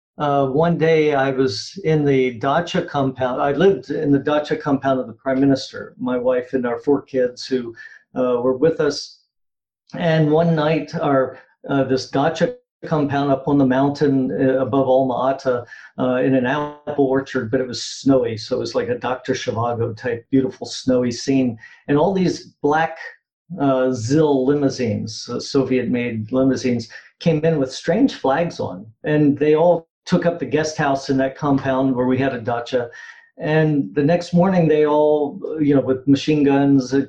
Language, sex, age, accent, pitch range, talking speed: English, male, 50-69, American, 130-150 Hz, 175 wpm